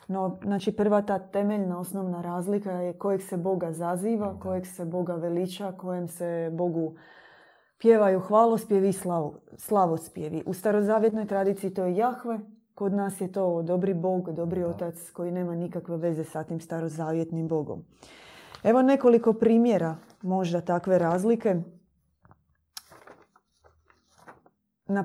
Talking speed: 120 wpm